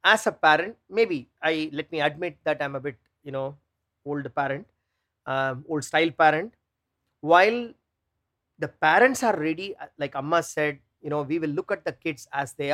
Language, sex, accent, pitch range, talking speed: English, male, Indian, 140-180 Hz, 180 wpm